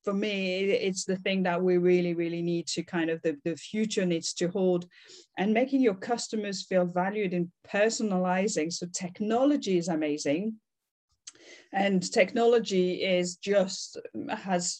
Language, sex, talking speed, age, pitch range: English, female, 145 wpm, 40-59, 180-220 Hz